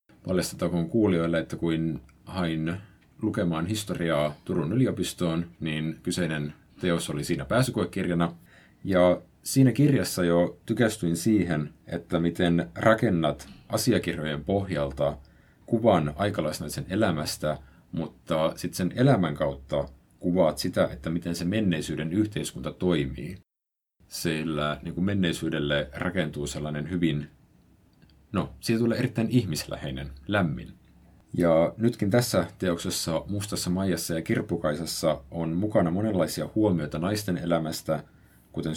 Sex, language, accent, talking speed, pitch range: male, Finnish, native, 110 wpm, 75-95 Hz